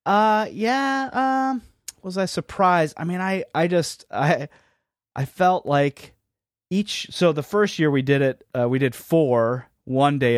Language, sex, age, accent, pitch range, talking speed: English, male, 30-49, American, 110-140 Hz, 160 wpm